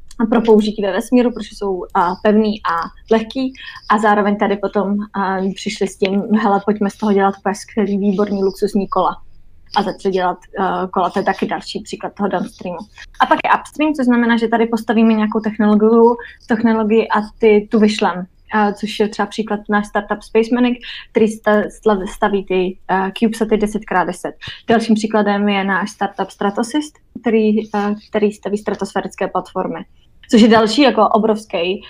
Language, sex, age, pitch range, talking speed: Czech, female, 20-39, 200-225 Hz, 155 wpm